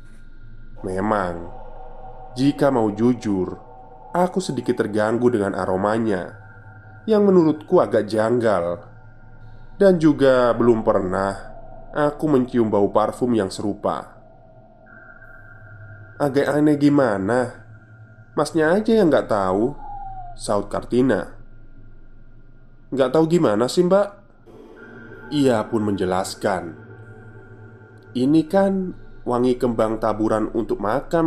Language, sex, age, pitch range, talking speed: Indonesian, male, 20-39, 110-135 Hz, 90 wpm